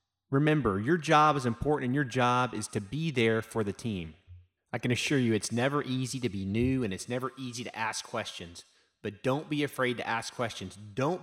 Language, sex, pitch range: English, male, 115-160 Hz